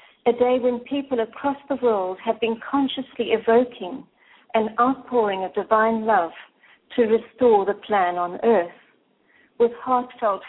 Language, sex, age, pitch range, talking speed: English, female, 60-79, 215-250 Hz, 135 wpm